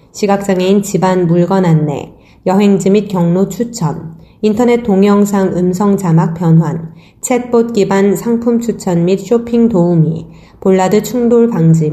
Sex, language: female, Korean